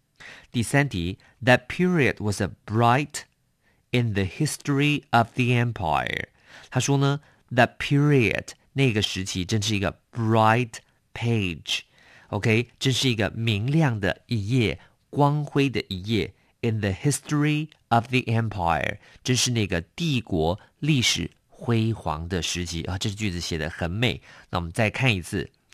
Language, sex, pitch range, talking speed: English, male, 100-135 Hz, 55 wpm